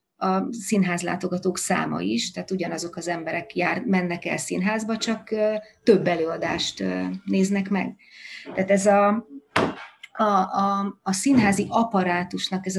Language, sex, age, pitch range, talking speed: Hungarian, female, 30-49, 170-195 Hz, 120 wpm